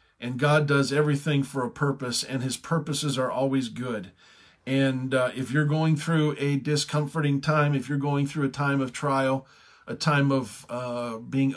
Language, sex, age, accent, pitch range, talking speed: English, male, 40-59, American, 125-145 Hz, 180 wpm